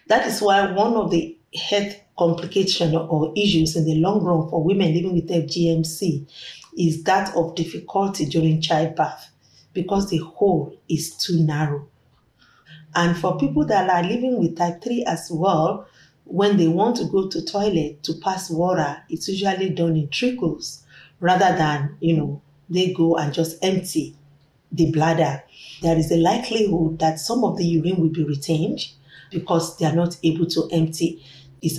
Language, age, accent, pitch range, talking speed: English, 40-59, Nigerian, 160-185 Hz, 170 wpm